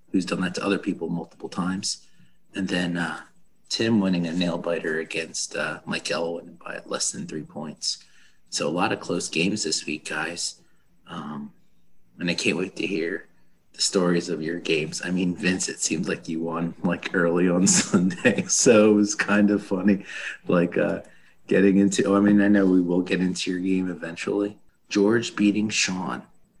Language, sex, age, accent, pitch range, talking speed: English, male, 30-49, American, 90-105 Hz, 185 wpm